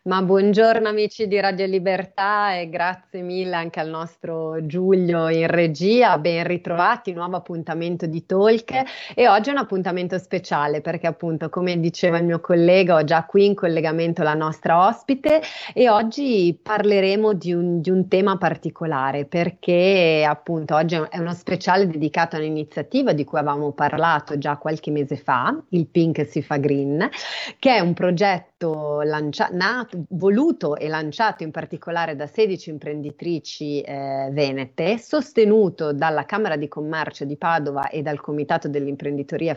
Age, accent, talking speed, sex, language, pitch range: 30-49, native, 150 wpm, female, Italian, 155-195 Hz